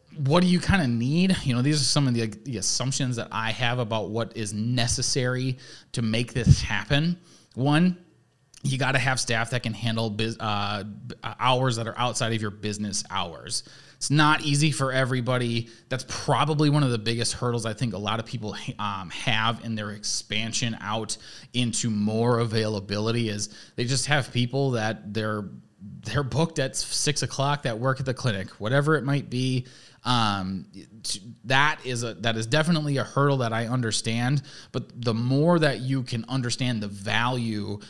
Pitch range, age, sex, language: 110-135 Hz, 20-39, male, English